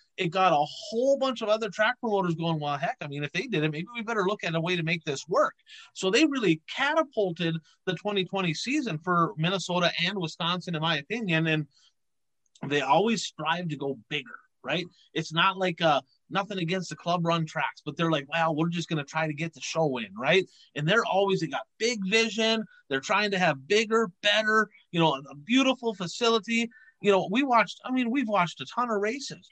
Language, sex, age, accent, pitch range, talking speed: English, male, 30-49, American, 160-205 Hz, 220 wpm